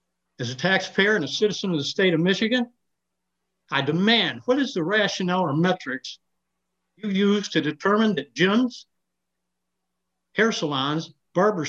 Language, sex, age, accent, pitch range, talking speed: English, male, 60-79, American, 140-200 Hz, 145 wpm